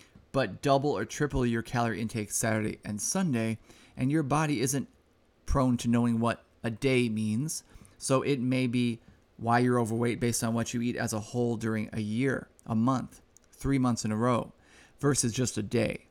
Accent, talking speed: American, 185 wpm